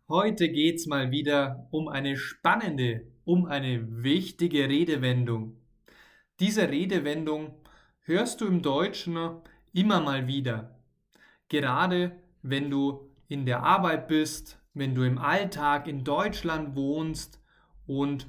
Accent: German